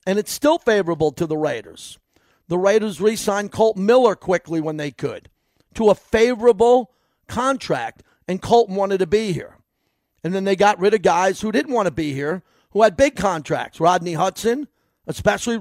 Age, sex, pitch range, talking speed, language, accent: 50-69, male, 160-210 Hz, 175 wpm, English, American